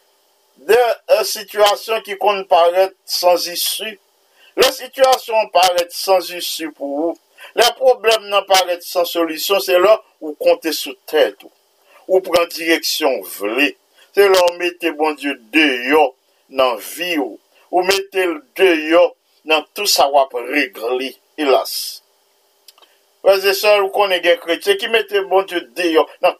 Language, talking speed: English, 130 wpm